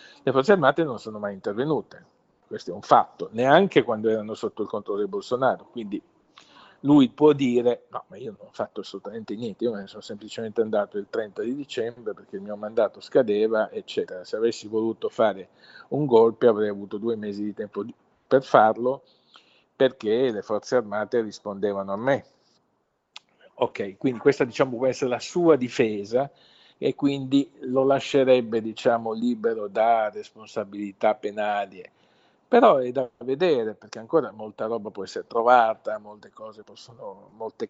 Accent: native